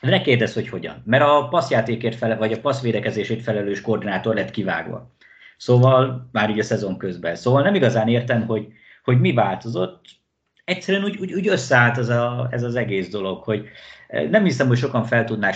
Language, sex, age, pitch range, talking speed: Hungarian, male, 50-69, 110-155 Hz, 175 wpm